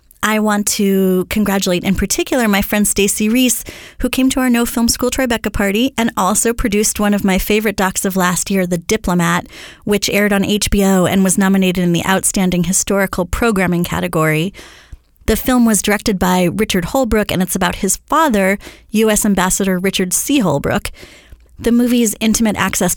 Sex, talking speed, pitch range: female, 170 wpm, 180-220 Hz